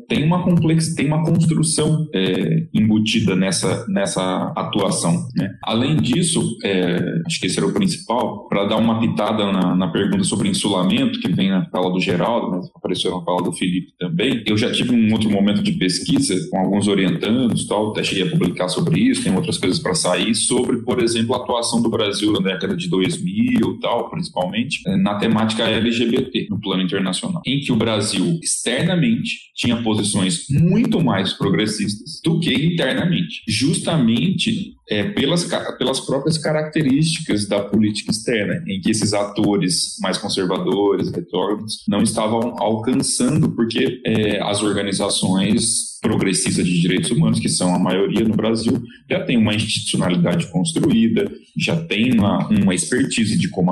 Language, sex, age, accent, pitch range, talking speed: Portuguese, male, 20-39, Brazilian, 105-165 Hz, 160 wpm